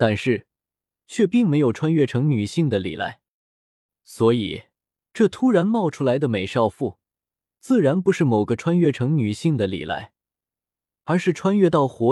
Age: 20-39